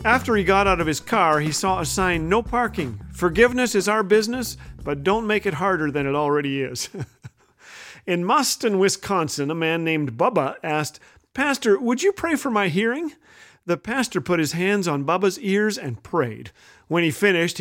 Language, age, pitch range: English, 40-59, 150-205 Hz